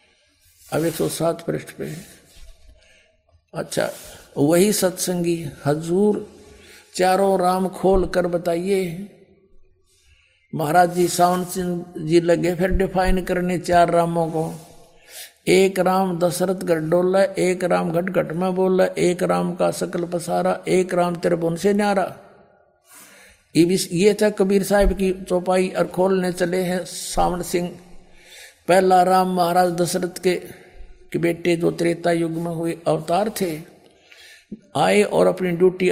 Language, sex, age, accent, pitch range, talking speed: Hindi, male, 60-79, native, 170-190 Hz, 130 wpm